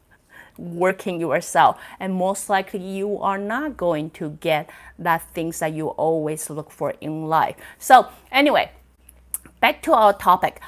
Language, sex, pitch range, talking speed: English, female, 160-210 Hz, 145 wpm